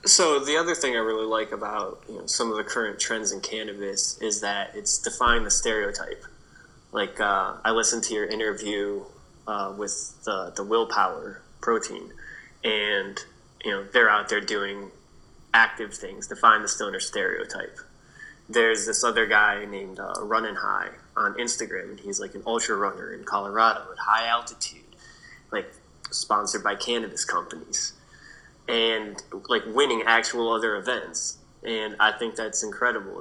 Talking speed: 155 wpm